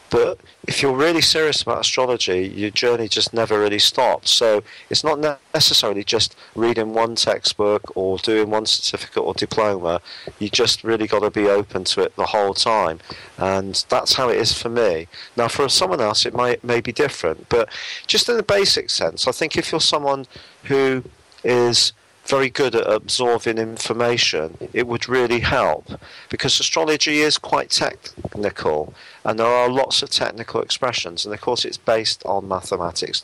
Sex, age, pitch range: male, 40-59, 105-135 Hz